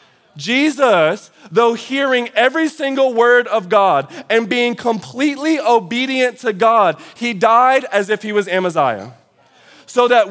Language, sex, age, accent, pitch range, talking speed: English, male, 20-39, American, 210-255 Hz, 135 wpm